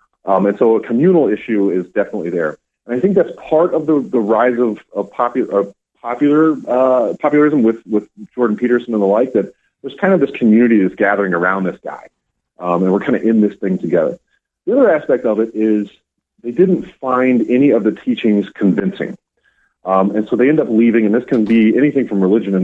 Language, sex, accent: English, male, American